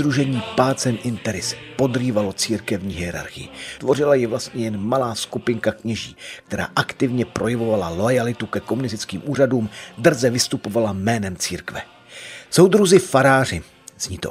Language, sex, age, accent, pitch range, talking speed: Czech, male, 40-59, native, 100-130 Hz, 115 wpm